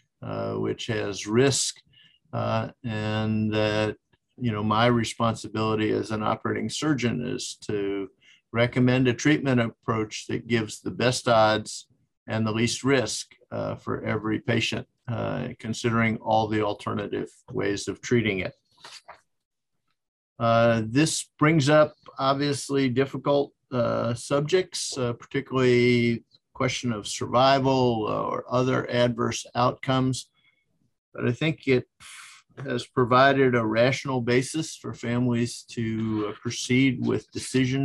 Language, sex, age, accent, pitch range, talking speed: English, male, 50-69, American, 110-130 Hz, 120 wpm